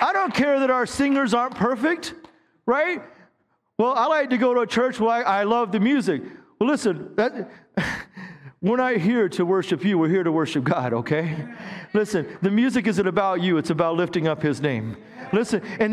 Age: 40-59